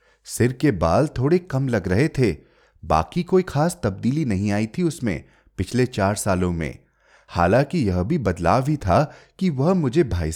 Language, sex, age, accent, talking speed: Hindi, male, 30-49, native, 175 wpm